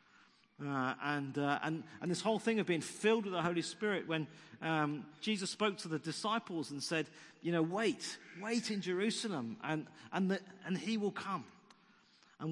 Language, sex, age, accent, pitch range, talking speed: English, male, 40-59, British, 150-200 Hz, 180 wpm